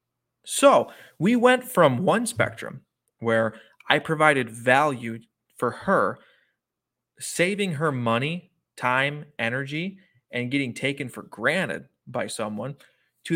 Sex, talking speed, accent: male, 110 wpm, American